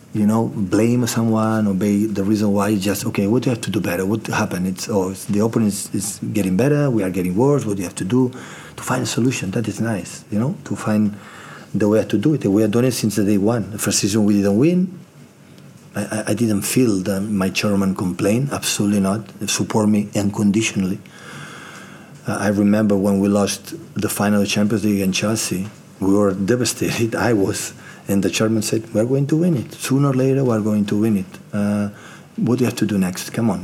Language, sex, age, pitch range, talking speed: English, male, 40-59, 100-120 Hz, 230 wpm